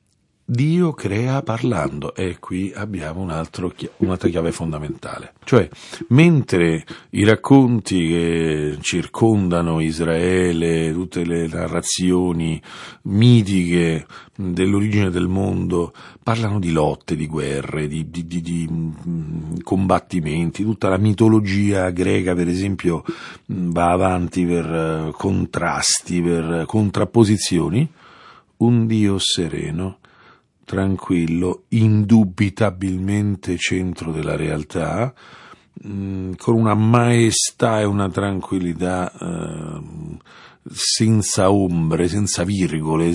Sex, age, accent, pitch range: male, 50-69, native, 85-110 Hz